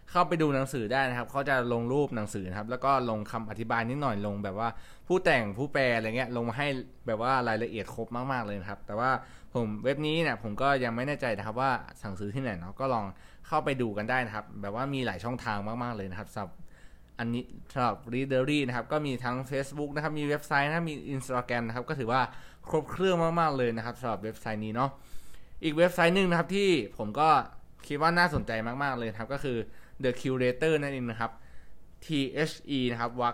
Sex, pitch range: male, 110-140 Hz